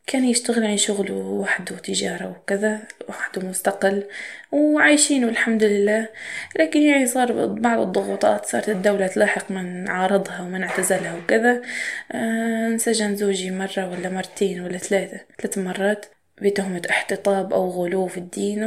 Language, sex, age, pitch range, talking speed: Arabic, female, 20-39, 195-230 Hz, 130 wpm